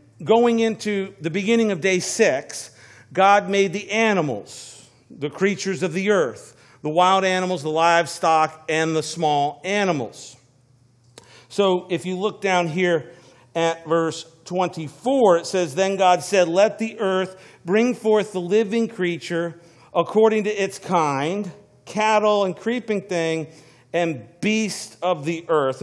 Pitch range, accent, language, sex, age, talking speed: 140-185 Hz, American, English, male, 50-69, 140 wpm